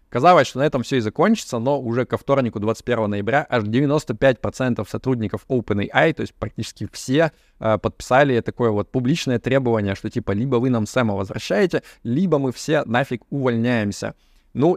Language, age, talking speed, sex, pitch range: Russian, 20-39, 165 wpm, male, 105-130 Hz